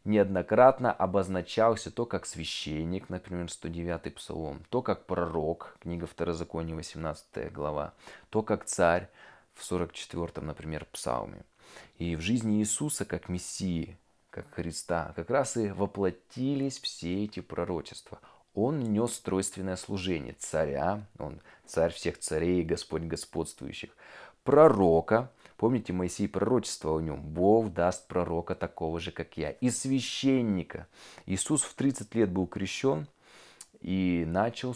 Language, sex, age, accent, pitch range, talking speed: Russian, male, 20-39, native, 85-110 Hz, 125 wpm